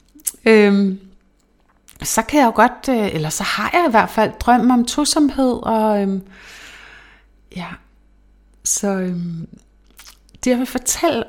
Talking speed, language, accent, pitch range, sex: 140 wpm, Danish, native, 185-235 Hz, female